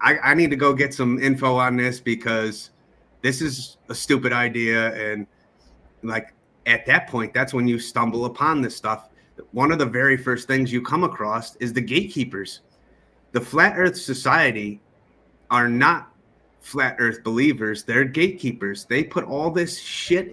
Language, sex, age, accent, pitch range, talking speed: English, male, 30-49, American, 115-140 Hz, 165 wpm